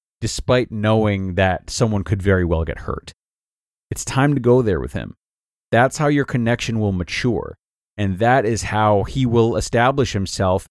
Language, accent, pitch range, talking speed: English, American, 95-120 Hz, 170 wpm